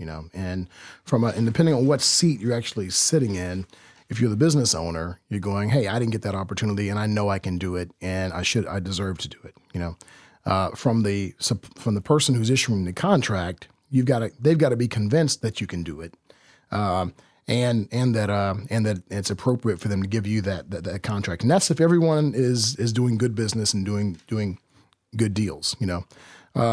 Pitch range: 100-140 Hz